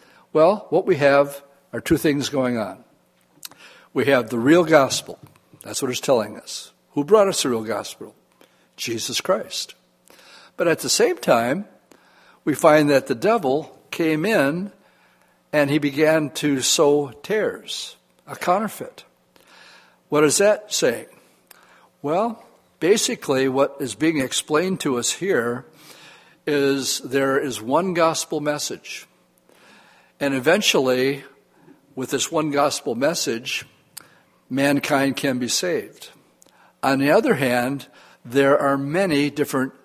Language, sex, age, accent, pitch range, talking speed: English, male, 60-79, American, 130-150 Hz, 130 wpm